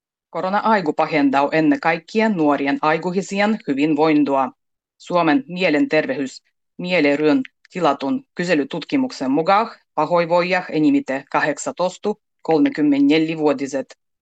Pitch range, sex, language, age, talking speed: 145-205 Hz, female, Finnish, 30-49, 75 wpm